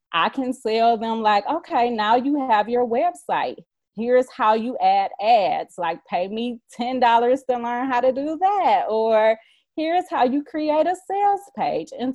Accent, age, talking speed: American, 30-49, 180 wpm